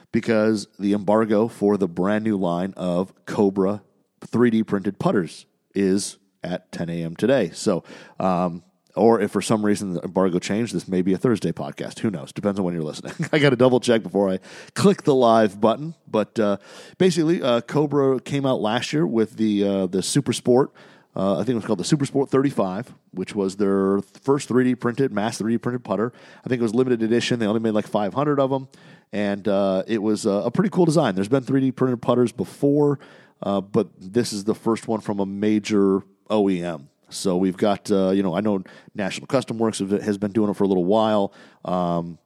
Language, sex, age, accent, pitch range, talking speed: English, male, 40-59, American, 95-120 Hz, 205 wpm